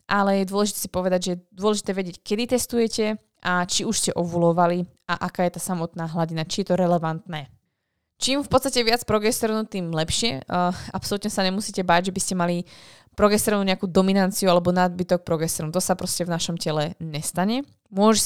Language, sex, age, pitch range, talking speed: Slovak, female, 20-39, 165-195 Hz, 185 wpm